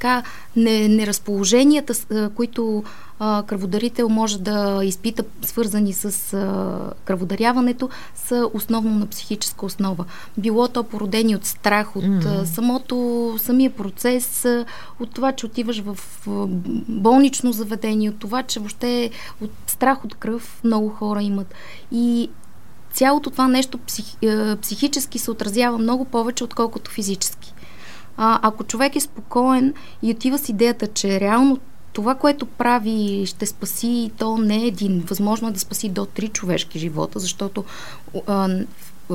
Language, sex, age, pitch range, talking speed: Bulgarian, female, 20-39, 200-240 Hz, 140 wpm